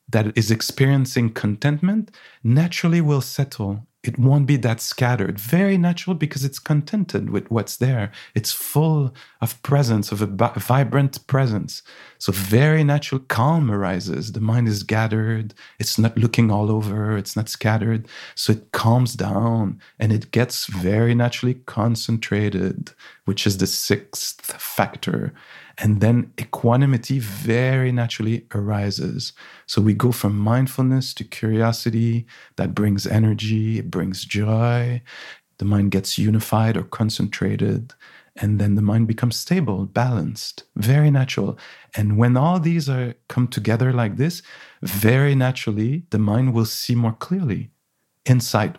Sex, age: male, 40-59